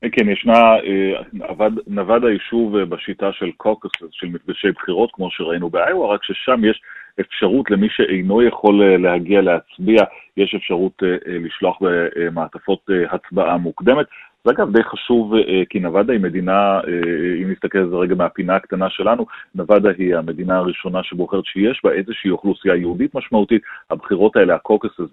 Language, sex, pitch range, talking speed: Hebrew, male, 90-105 Hz, 135 wpm